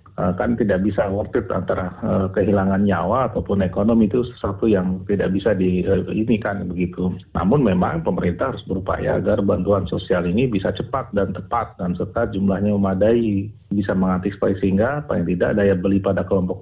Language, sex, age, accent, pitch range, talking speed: Indonesian, male, 40-59, native, 95-120 Hz, 165 wpm